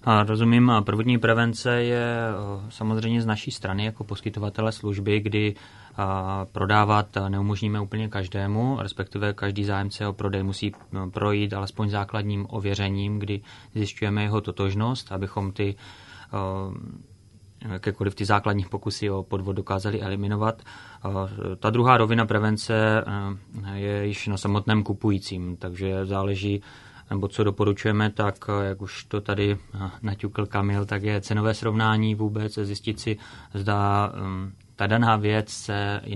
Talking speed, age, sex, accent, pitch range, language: 120 wpm, 20-39, male, native, 100-110 Hz, Czech